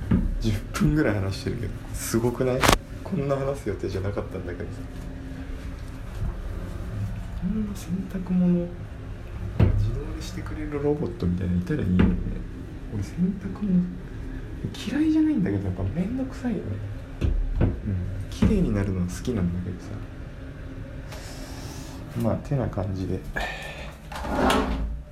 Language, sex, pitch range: Japanese, male, 90-130 Hz